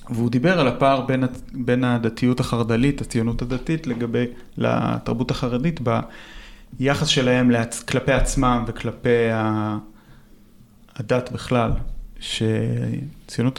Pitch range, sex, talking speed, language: 115-135 Hz, male, 95 wpm, Hebrew